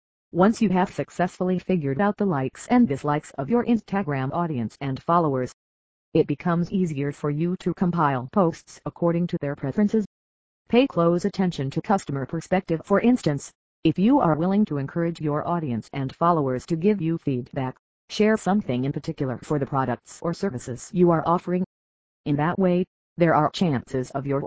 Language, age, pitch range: English, 40-59, 140-180 Hz